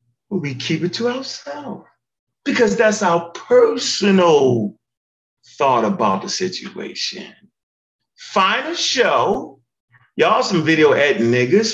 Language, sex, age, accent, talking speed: English, male, 40-59, American, 105 wpm